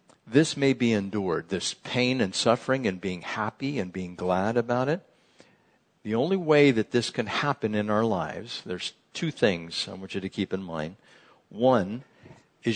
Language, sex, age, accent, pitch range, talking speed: English, male, 60-79, American, 100-125 Hz, 180 wpm